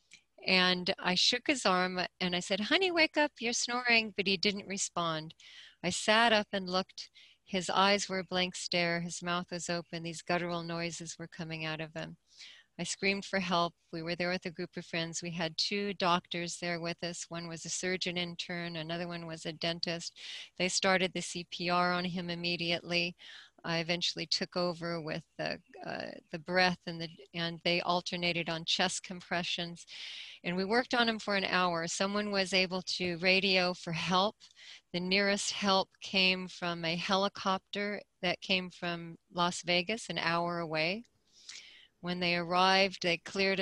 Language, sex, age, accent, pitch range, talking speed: English, female, 40-59, American, 170-190 Hz, 175 wpm